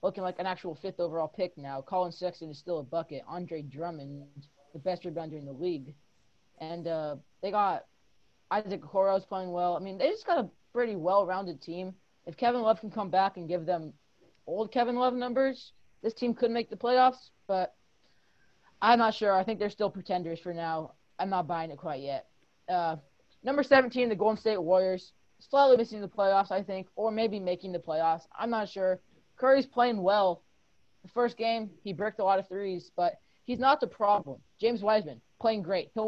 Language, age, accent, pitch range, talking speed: English, 20-39, American, 175-230 Hz, 195 wpm